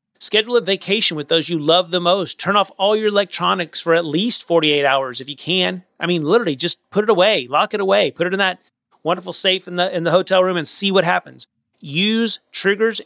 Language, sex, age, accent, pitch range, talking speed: English, male, 30-49, American, 150-180 Hz, 230 wpm